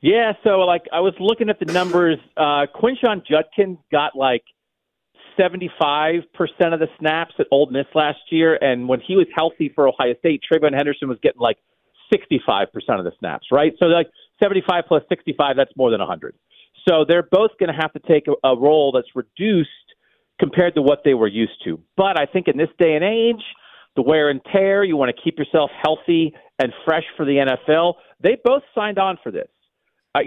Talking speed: 200 wpm